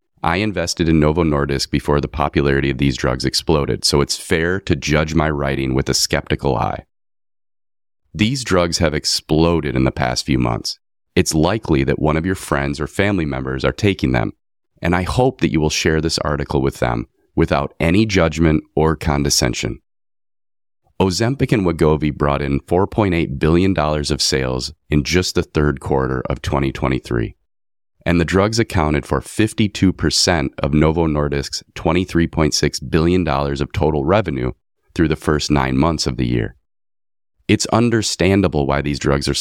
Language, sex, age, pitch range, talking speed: English, male, 30-49, 70-90 Hz, 160 wpm